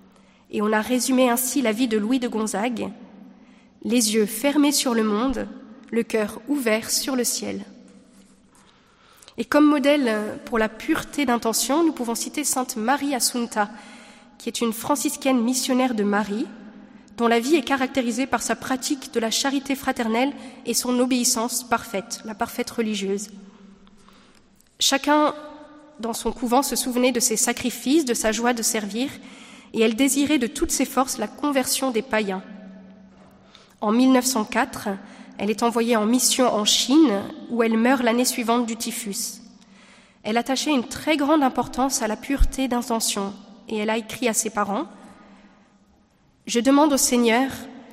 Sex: female